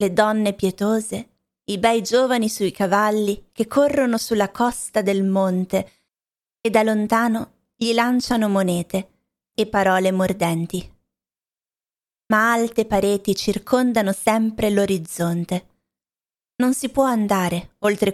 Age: 30-49